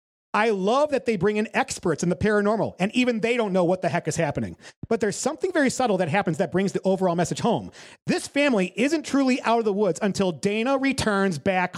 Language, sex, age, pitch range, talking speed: English, male, 40-59, 170-230 Hz, 230 wpm